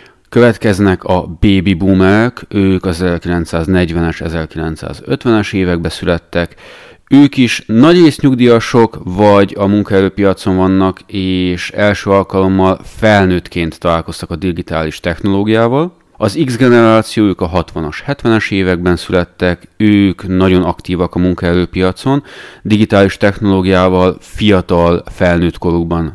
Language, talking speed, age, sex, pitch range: Hungarian, 100 wpm, 30-49, male, 90-105 Hz